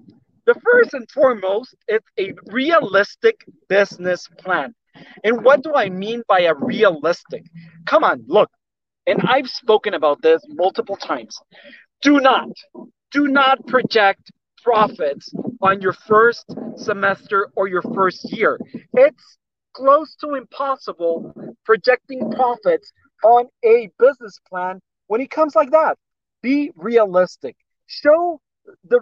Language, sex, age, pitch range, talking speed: English, male, 40-59, 185-275 Hz, 125 wpm